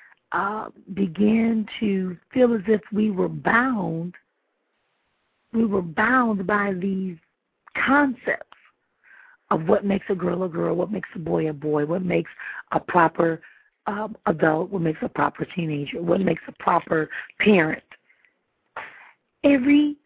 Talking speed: 130 wpm